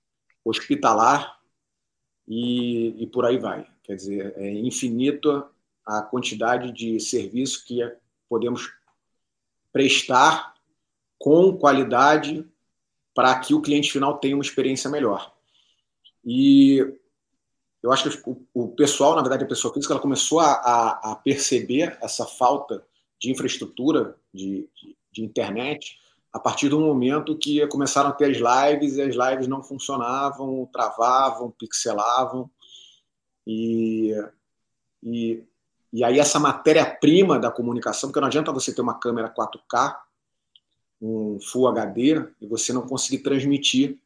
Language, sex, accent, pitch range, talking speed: Portuguese, male, Brazilian, 115-145 Hz, 125 wpm